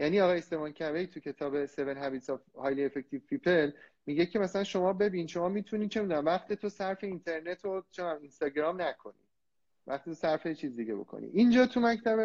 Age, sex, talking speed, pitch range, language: 30-49, male, 165 wpm, 135-205 Hz, Persian